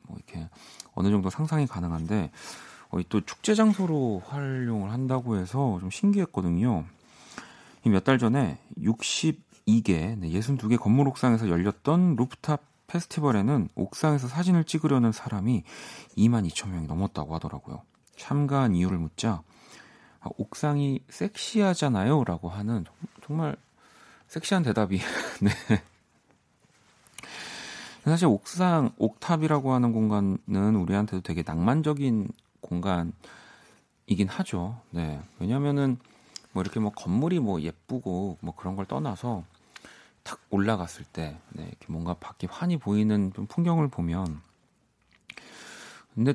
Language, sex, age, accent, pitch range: Korean, male, 40-59, native, 95-140 Hz